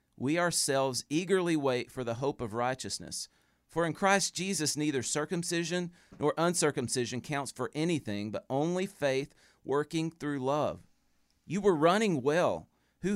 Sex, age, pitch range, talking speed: male, 40-59, 120-160 Hz, 140 wpm